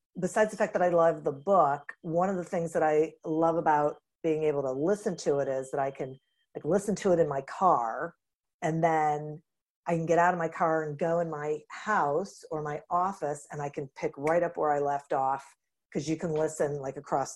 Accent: American